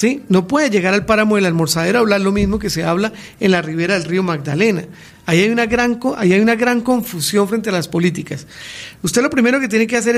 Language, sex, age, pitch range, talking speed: Spanish, male, 40-59, 185-230 Hz, 220 wpm